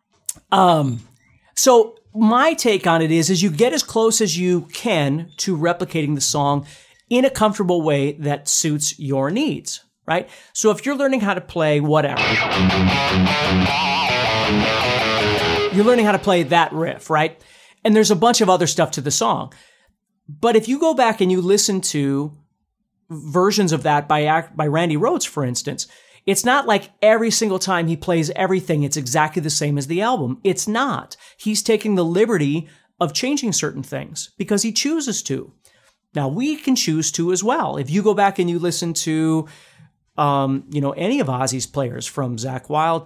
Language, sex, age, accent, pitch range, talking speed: English, male, 40-59, American, 145-205 Hz, 180 wpm